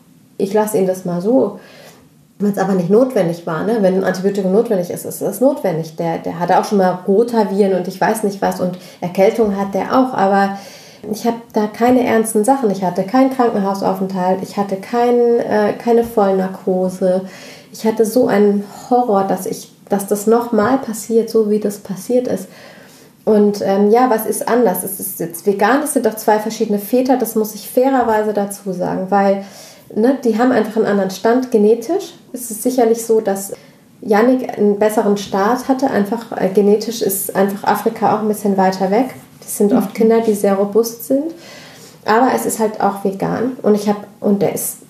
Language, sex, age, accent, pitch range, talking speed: German, female, 30-49, German, 195-235 Hz, 195 wpm